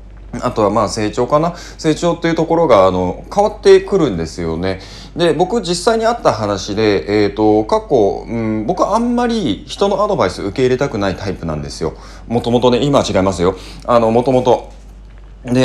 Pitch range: 100-160 Hz